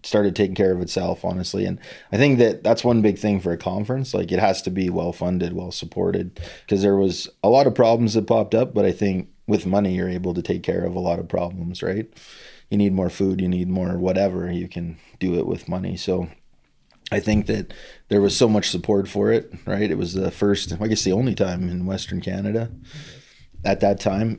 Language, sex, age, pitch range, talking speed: English, male, 30-49, 90-105 Hz, 230 wpm